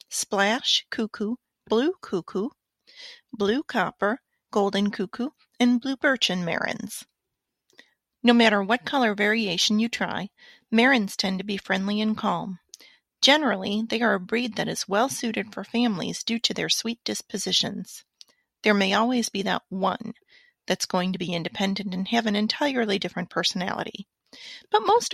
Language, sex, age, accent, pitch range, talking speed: English, female, 40-59, American, 200-255 Hz, 145 wpm